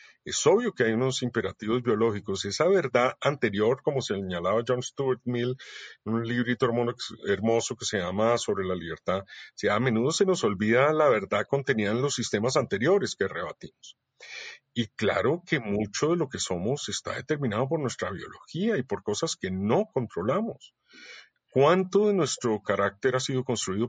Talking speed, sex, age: 170 wpm, male, 50-69